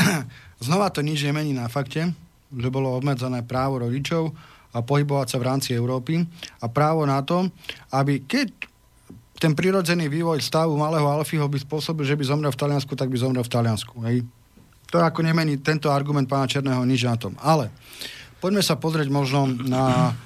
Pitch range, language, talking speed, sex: 130-155 Hz, Slovak, 170 wpm, male